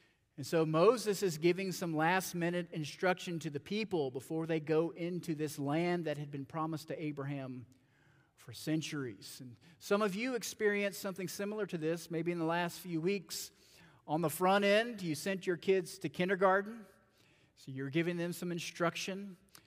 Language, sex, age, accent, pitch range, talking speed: English, male, 40-59, American, 145-185 Hz, 170 wpm